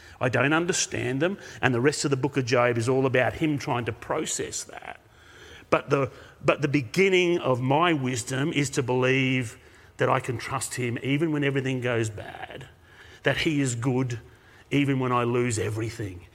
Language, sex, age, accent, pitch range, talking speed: English, male, 40-59, Australian, 125-160 Hz, 180 wpm